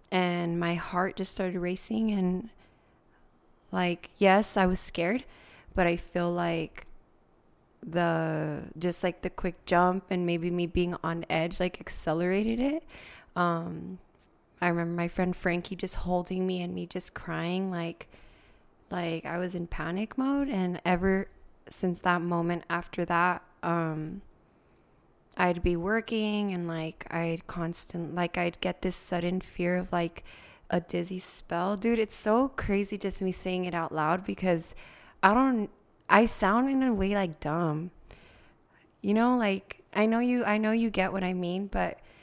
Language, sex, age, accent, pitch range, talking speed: English, female, 20-39, American, 170-200 Hz, 160 wpm